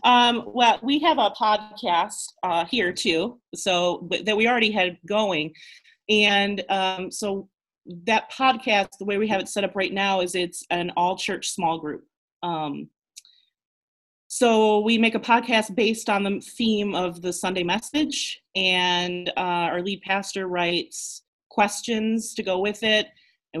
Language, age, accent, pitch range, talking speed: English, 30-49, American, 175-215 Hz, 155 wpm